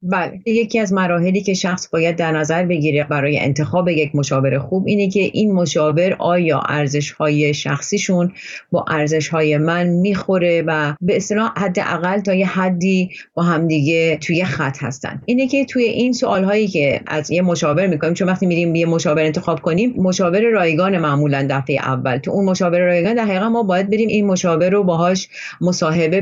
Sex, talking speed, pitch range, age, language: female, 165 wpm, 160-200 Hz, 30-49, Persian